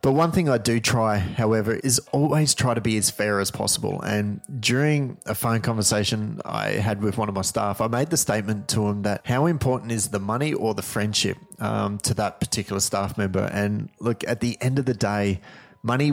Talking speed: 215 wpm